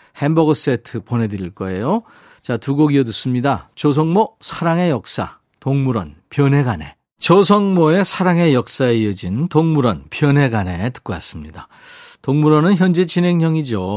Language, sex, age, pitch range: Korean, male, 40-59, 115-170 Hz